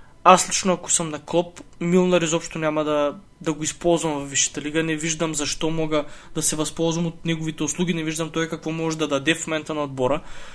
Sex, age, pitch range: male, 20-39, 155-185 Hz